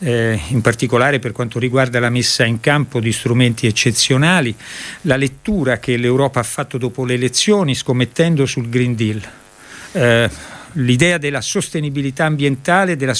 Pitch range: 120-145 Hz